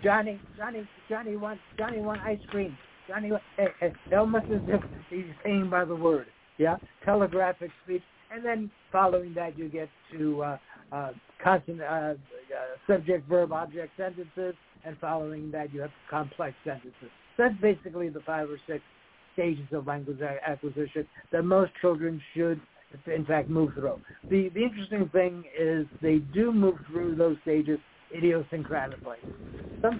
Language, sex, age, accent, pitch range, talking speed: English, male, 60-79, American, 155-195 Hz, 140 wpm